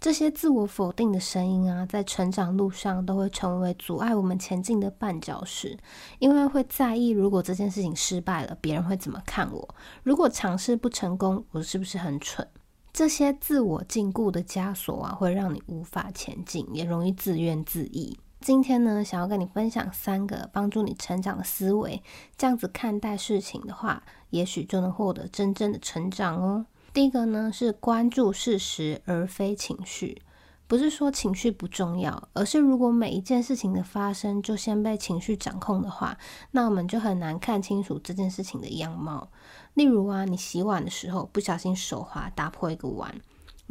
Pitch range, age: 185-230 Hz, 20-39